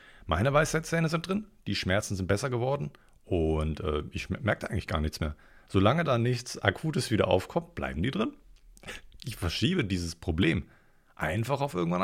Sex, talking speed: male, 165 wpm